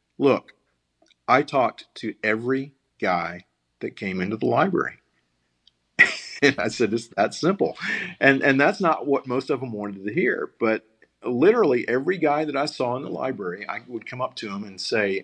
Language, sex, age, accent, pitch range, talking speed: English, male, 50-69, American, 100-135 Hz, 180 wpm